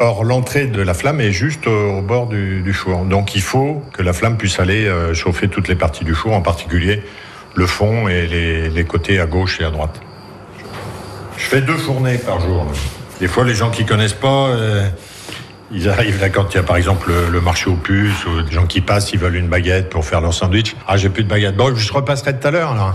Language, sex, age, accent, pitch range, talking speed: French, male, 50-69, French, 95-125 Hz, 250 wpm